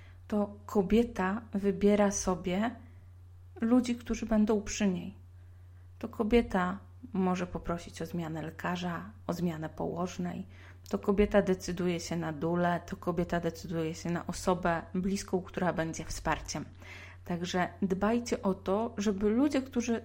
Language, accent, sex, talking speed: Polish, native, female, 125 wpm